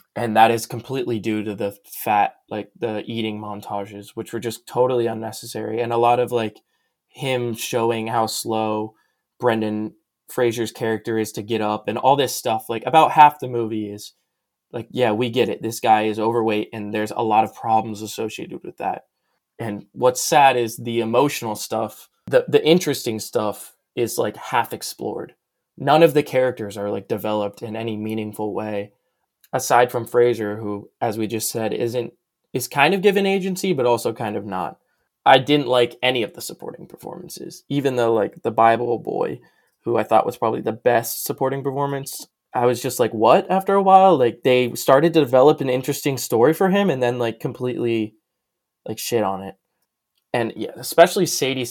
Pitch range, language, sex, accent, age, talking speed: 110-135 Hz, English, male, American, 20-39, 185 wpm